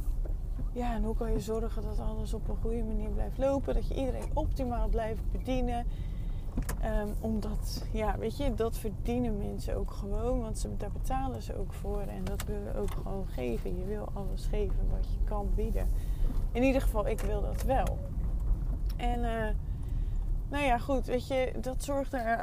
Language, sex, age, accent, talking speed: Dutch, female, 20-39, Dutch, 180 wpm